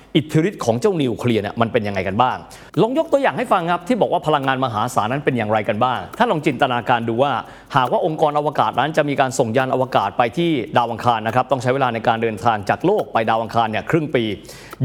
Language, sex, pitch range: Thai, male, 120-170 Hz